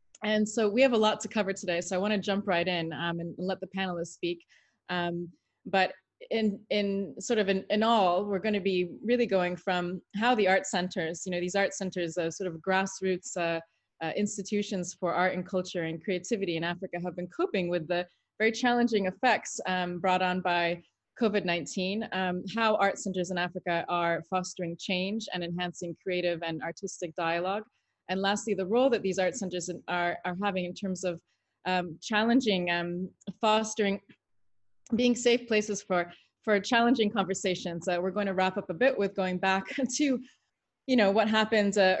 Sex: female